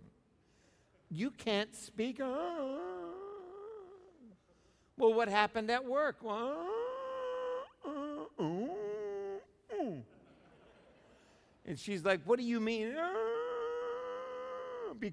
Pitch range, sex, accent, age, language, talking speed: 160-250 Hz, male, American, 60-79, English, 100 wpm